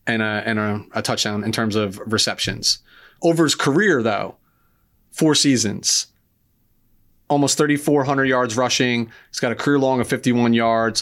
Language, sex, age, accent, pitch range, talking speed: English, male, 30-49, American, 110-135 Hz, 140 wpm